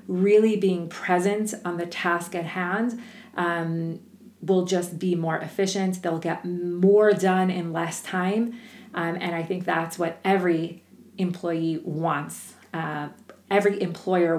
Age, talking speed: 30-49, 140 wpm